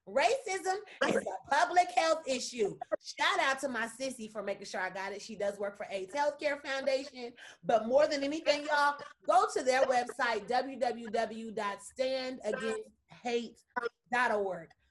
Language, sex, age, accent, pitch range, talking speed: English, female, 30-49, American, 210-275 Hz, 135 wpm